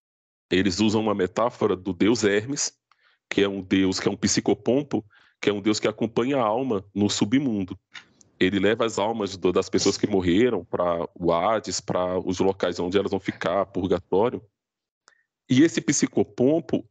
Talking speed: 165 wpm